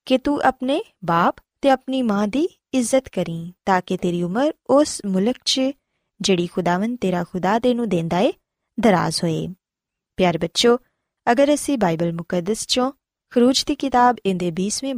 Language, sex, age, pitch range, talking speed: Punjabi, female, 20-39, 185-275 Hz, 150 wpm